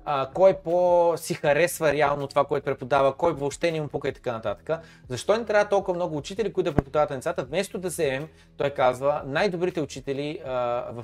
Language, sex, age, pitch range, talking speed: Bulgarian, male, 20-39, 125-170 Hz, 190 wpm